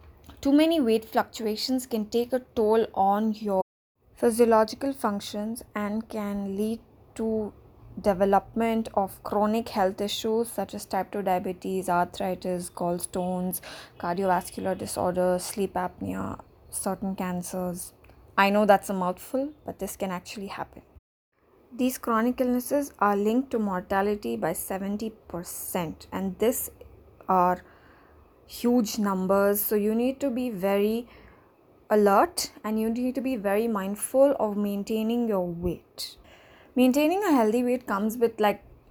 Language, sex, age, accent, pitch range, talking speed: English, female, 20-39, Indian, 195-245 Hz, 130 wpm